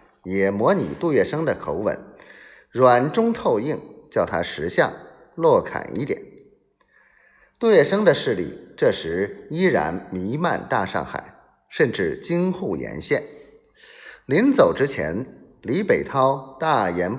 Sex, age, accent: male, 30-49, native